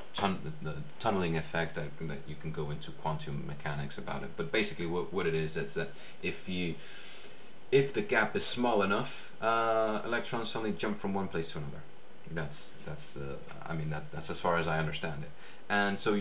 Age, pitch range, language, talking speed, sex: 30-49, 80-95 Hz, English, 170 wpm, male